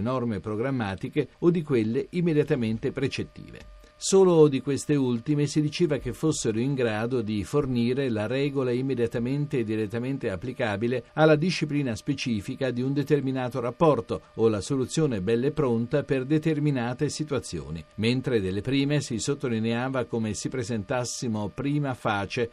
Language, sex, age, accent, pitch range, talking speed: Italian, male, 50-69, native, 115-150 Hz, 135 wpm